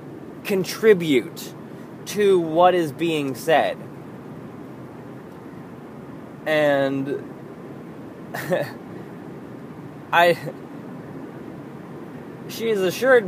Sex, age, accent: male, 20-39, American